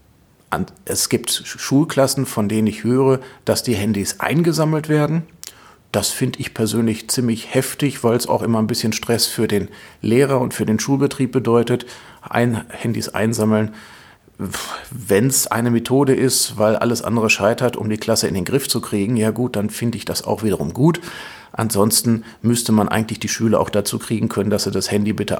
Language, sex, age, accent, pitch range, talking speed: German, male, 40-59, German, 100-120 Hz, 180 wpm